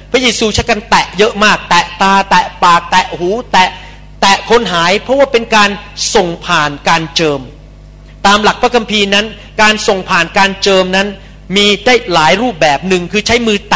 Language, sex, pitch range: Thai, male, 180-230 Hz